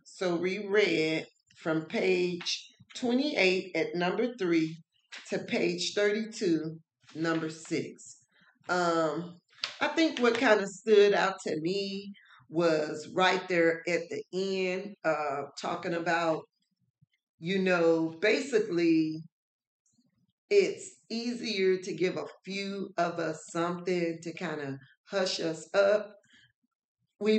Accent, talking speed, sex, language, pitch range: American, 115 wpm, female, English, 165-205 Hz